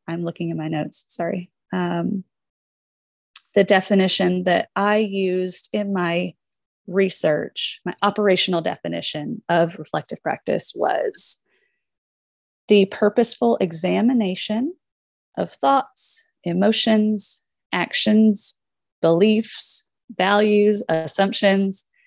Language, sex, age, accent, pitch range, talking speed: English, female, 30-49, American, 170-210 Hz, 85 wpm